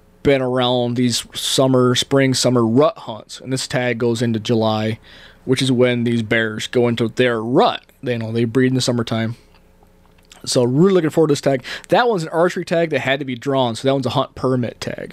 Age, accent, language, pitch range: 20-39, American, English, 120-150 Hz